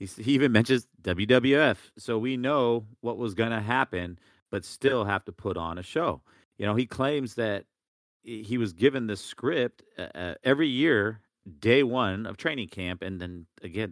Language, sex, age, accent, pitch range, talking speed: English, male, 40-59, American, 90-115 Hz, 175 wpm